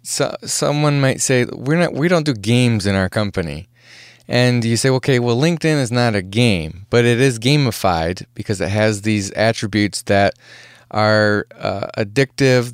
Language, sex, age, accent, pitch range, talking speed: English, male, 20-39, American, 105-135 Hz, 165 wpm